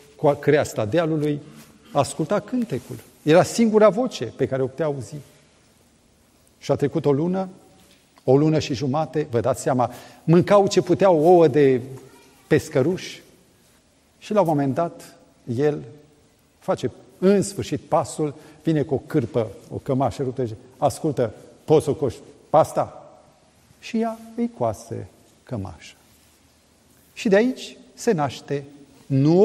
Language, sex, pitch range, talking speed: Romanian, male, 120-165 Hz, 130 wpm